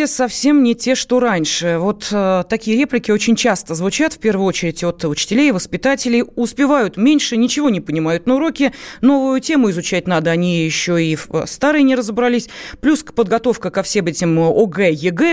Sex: female